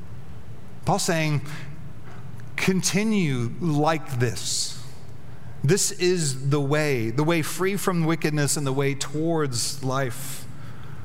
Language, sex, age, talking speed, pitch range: English, male, 40-59, 105 wpm, 125-150 Hz